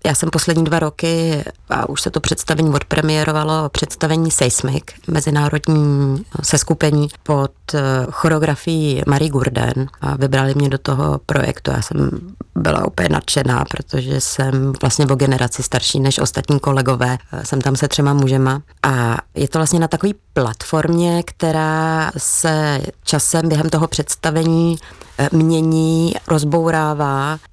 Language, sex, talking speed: Czech, female, 130 wpm